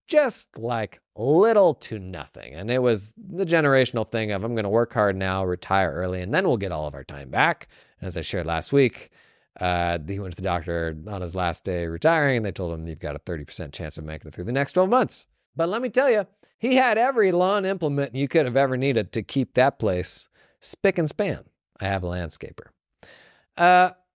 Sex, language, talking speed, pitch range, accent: male, English, 225 wpm, 85-135 Hz, American